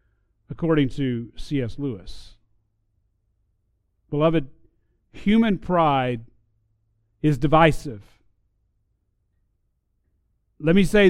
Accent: American